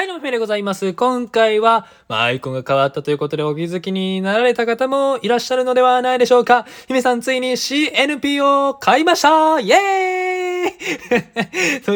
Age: 20-39